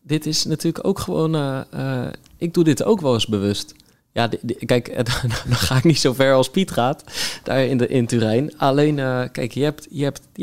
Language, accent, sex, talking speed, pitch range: Dutch, Dutch, male, 220 wpm, 110-140 Hz